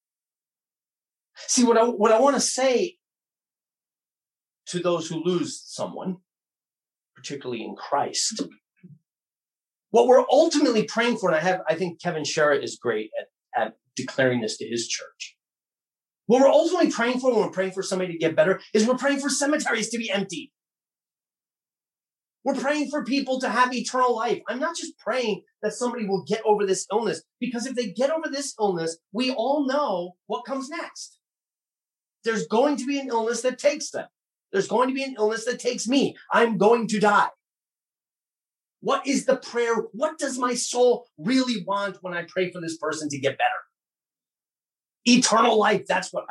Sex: male